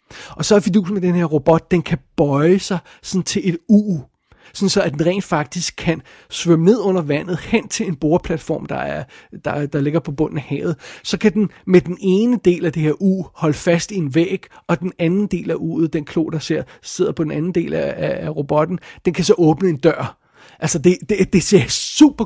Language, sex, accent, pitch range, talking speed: Danish, male, native, 155-190 Hz, 225 wpm